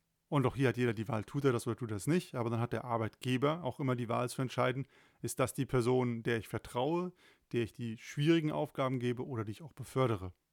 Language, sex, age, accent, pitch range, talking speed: German, male, 30-49, German, 120-140 Hz, 250 wpm